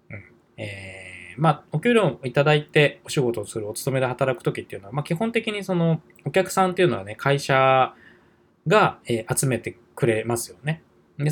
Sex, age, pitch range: male, 20-39, 115-180 Hz